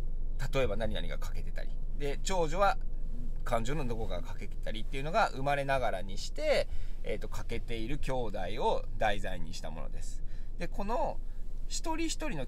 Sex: male